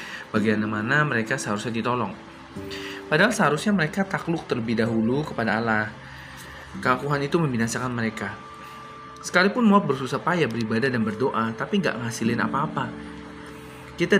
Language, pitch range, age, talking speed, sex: Indonesian, 110-145 Hz, 20-39, 125 wpm, male